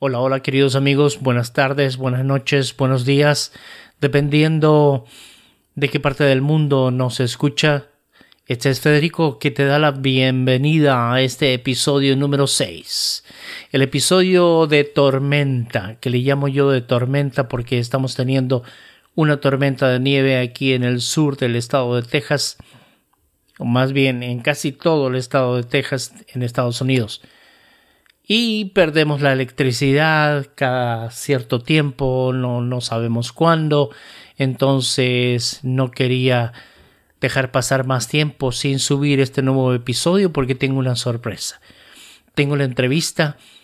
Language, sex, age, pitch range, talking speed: Spanish, male, 40-59, 130-145 Hz, 135 wpm